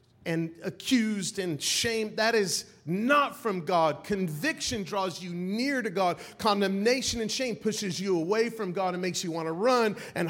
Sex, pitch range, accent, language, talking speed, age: male, 170-235 Hz, American, English, 175 wpm, 40-59